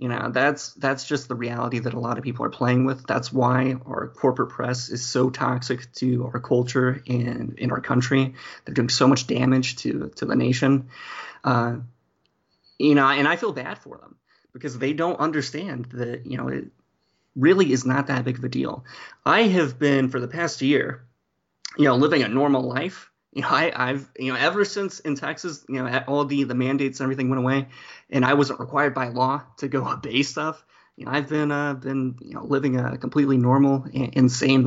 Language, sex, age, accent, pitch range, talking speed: English, male, 30-49, American, 125-140 Hz, 210 wpm